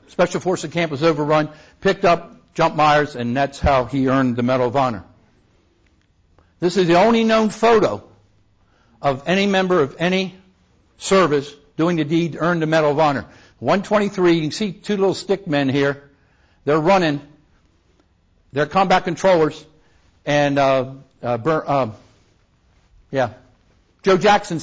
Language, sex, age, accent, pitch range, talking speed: English, male, 60-79, American, 130-175 Hz, 150 wpm